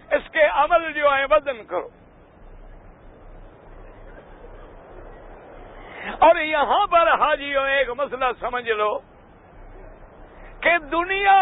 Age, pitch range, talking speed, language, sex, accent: 60-79, 265-330 Hz, 90 wpm, English, male, Indian